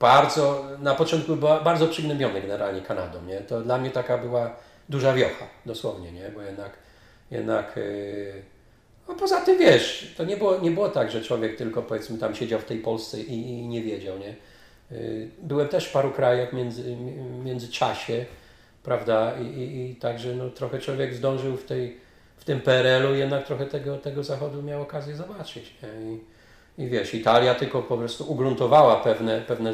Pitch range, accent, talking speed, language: 110-145 Hz, native, 170 wpm, Polish